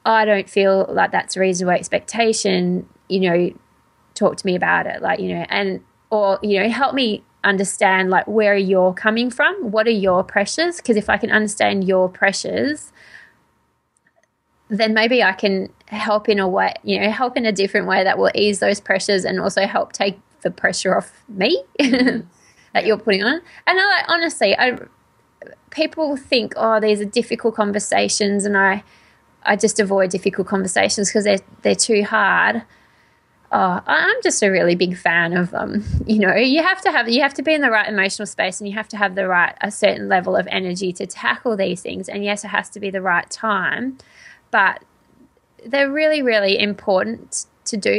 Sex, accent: female, Australian